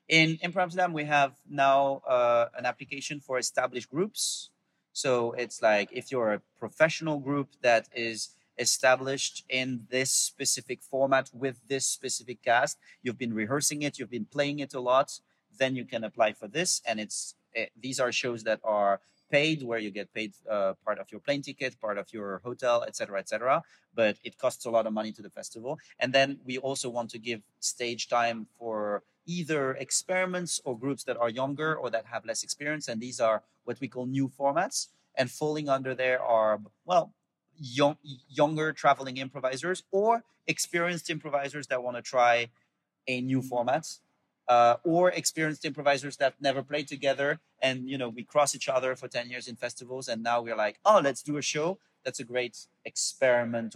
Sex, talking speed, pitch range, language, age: male, 185 wpm, 120-145 Hz, Polish, 30-49